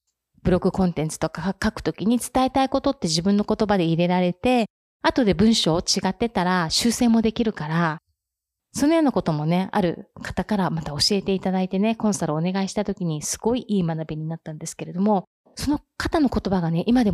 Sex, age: female, 30-49